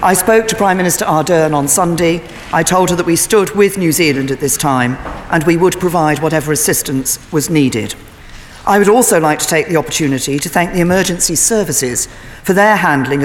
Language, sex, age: English, female, 40-59